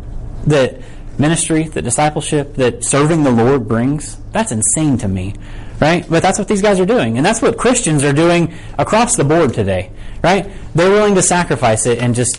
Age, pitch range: 30-49, 110-165 Hz